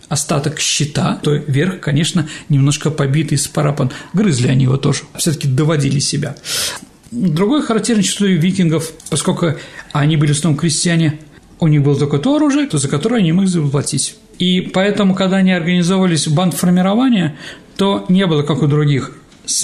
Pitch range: 145-180 Hz